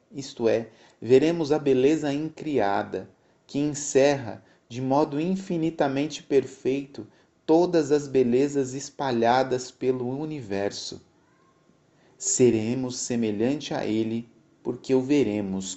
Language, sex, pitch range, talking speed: Portuguese, male, 120-150 Hz, 95 wpm